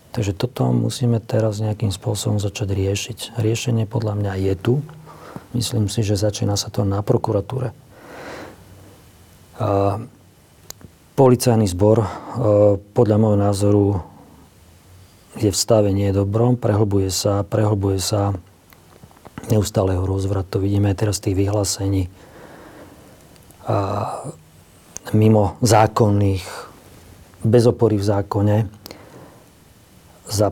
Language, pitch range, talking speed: Slovak, 100-110 Hz, 95 wpm